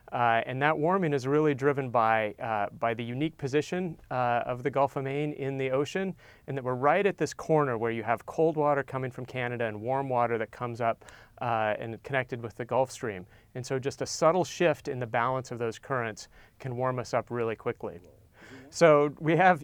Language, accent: English, American